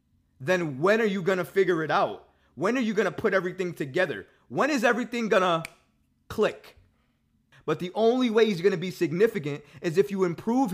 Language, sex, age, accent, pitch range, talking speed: English, male, 20-39, American, 160-220 Hz, 180 wpm